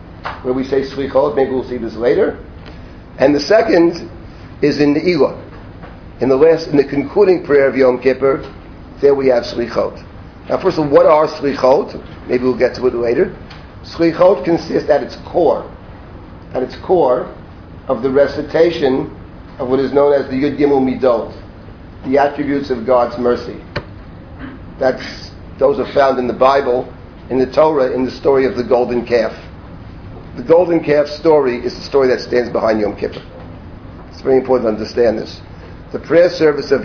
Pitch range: 115-145 Hz